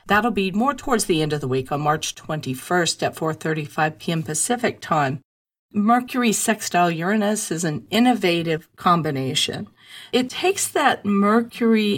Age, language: 40-59, English